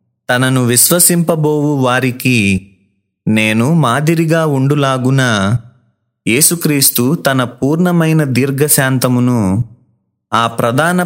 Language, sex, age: Telugu, male, 30-49